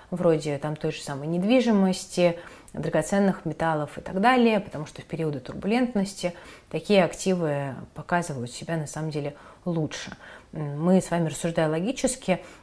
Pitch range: 150-185 Hz